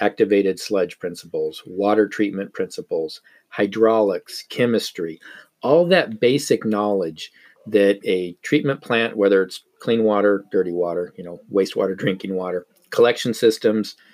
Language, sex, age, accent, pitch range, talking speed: English, male, 40-59, American, 100-125 Hz, 125 wpm